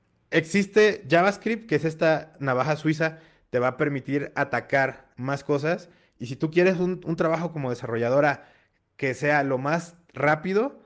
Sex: male